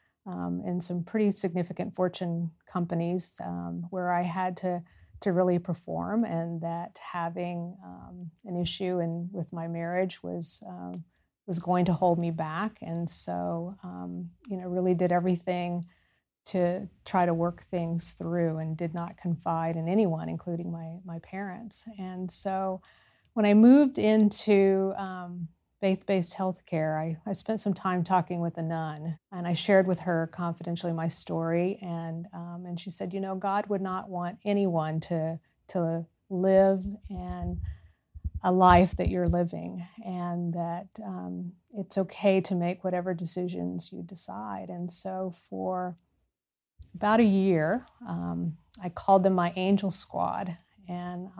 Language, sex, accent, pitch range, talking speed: English, female, American, 165-185 Hz, 150 wpm